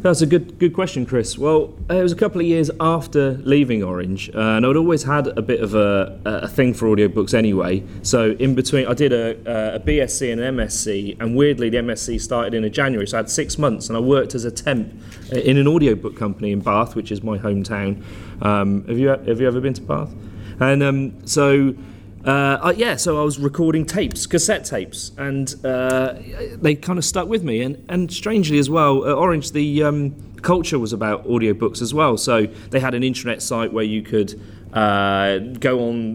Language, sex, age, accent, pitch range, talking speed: English, male, 30-49, British, 105-135 Hz, 210 wpm